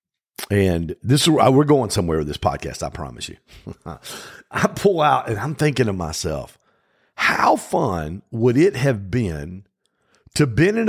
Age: 50-69